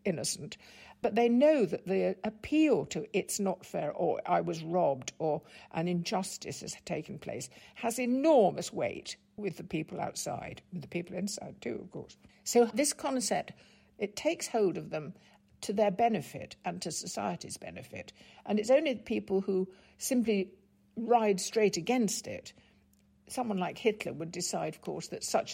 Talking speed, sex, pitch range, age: 160 wpm, female, 175-230 Hz, 60-79